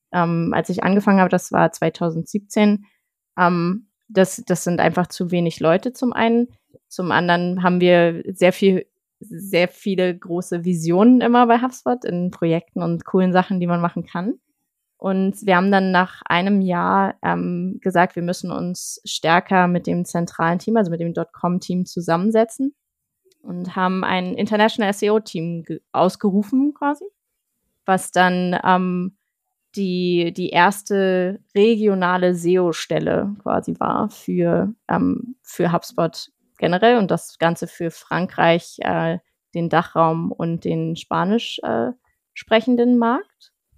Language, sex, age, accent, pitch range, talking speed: German, female, 20-39, German, 175-210 Hz, 135 wpm